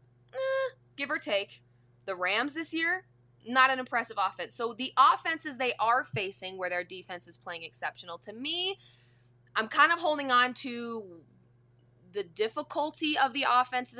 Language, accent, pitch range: English, American, 160-255 Hz